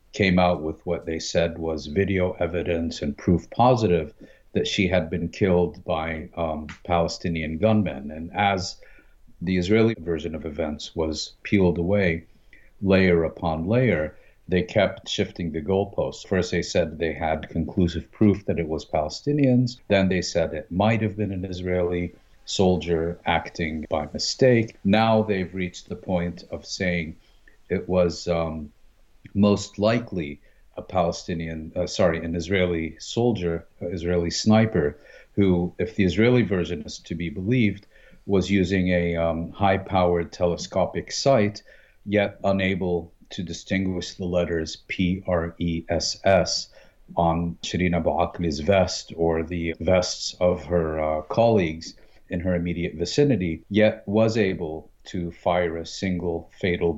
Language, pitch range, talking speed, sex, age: English, 85-100 Hz, 145 wpm, male, 50-69